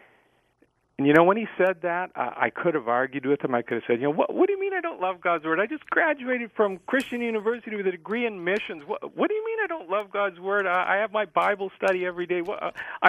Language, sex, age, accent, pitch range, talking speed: English, male, 50-69, American, 120-200 Hz, 280 wpm